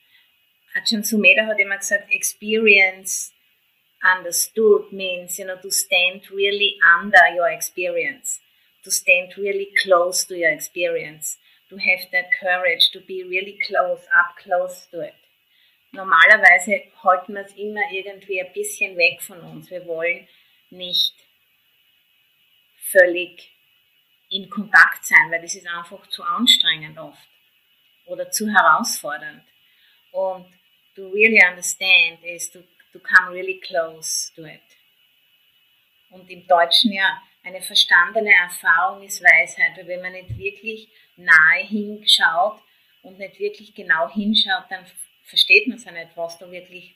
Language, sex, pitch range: English, female, 175-210 Hz